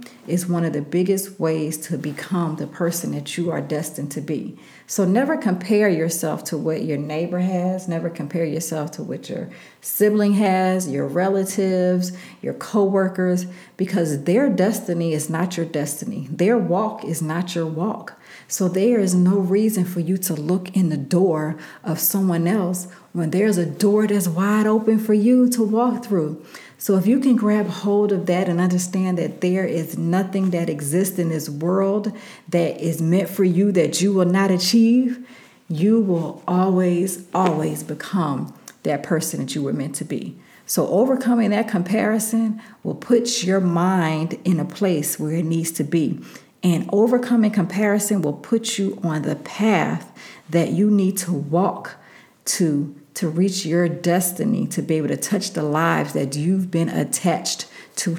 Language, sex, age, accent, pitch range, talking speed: English, female, 40-59, American, 165-205 Hz, 170 wpm